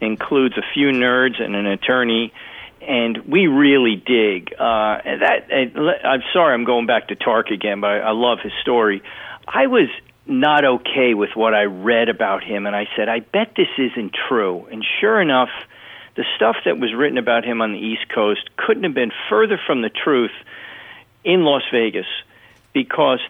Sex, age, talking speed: male, 50-69, 185 wpm